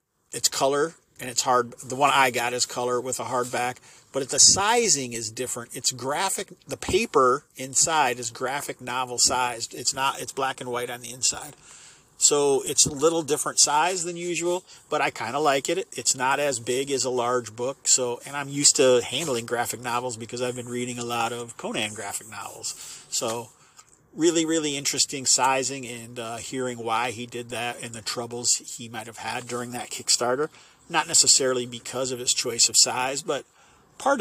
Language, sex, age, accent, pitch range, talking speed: English, male, 40-59, American, 120-145 Hz, 190 wpm